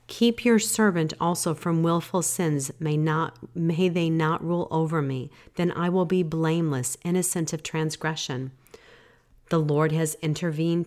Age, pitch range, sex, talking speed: 40-59, 150-180 Hz, female, 150 wpm